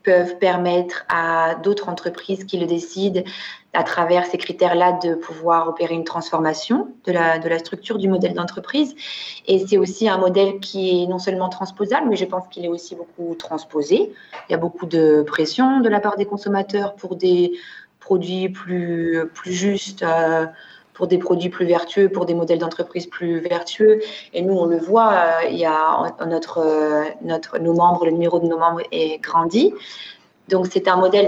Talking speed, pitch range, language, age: 170 wpm, 170-195 Hz, French, 30-49